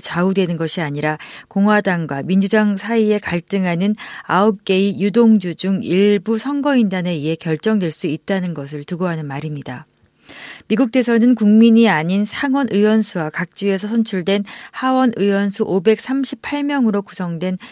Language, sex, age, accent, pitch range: Korean, female, 40-59, native, 175-225 Hz